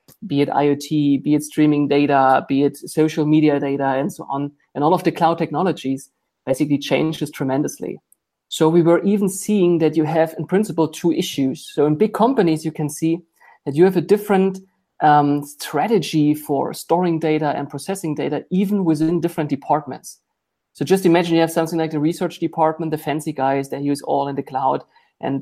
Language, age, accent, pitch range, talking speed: English, 30-49, German, 145-175 Hz, 190 wpm